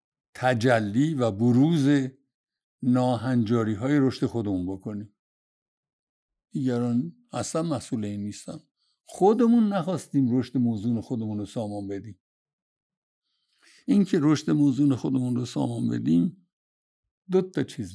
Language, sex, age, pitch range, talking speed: Persian, male, 60-79, 120-175 Hz, 105 wpm